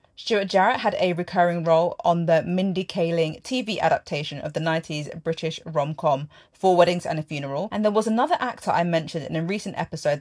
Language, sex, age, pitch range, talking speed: English, female, 30-49, 160-215 Hz, 195 wpm